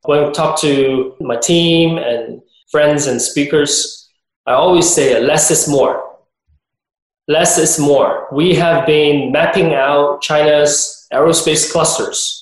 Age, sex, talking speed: 20-39, male, 130 wpm